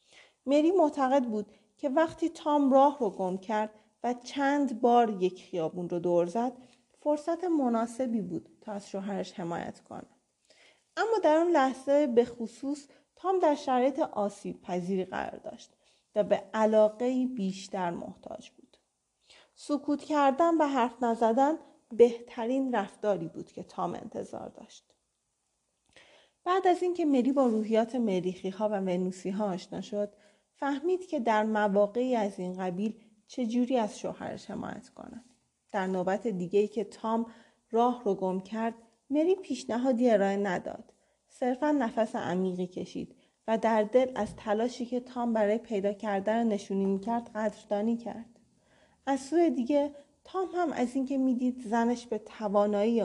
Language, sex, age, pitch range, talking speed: Persian, female, 30-49, 205-270 Hz, 140 wpm